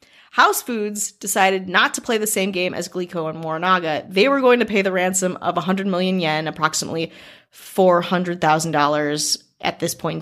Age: 30-49